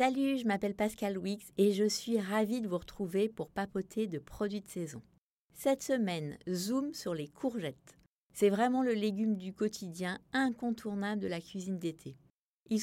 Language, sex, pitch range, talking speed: French, female, 185-235 Hz, 170 wpm